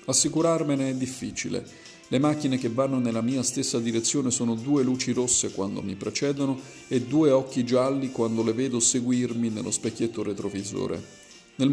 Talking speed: 155 wpm